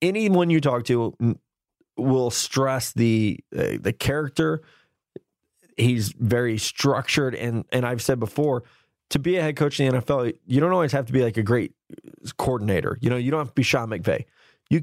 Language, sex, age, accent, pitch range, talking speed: English, male, 20-39, American, 115-155 Hz, 185 wpm